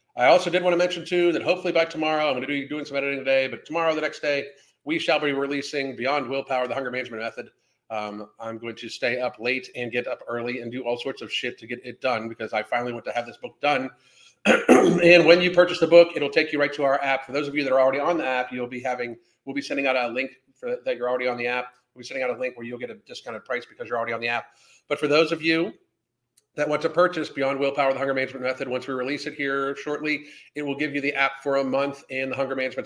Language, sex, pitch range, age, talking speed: English, male, 125-160 Hz, 40-59, 285 wpm